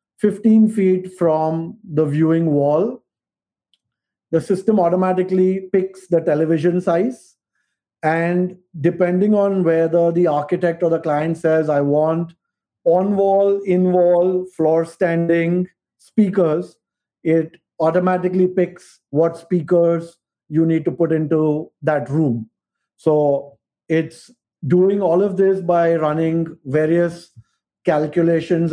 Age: 50-69